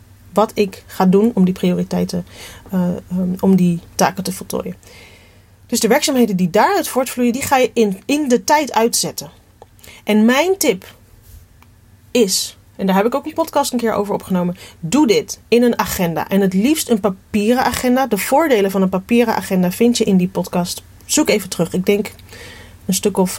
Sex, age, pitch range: female, 30-49, 175-240 Hz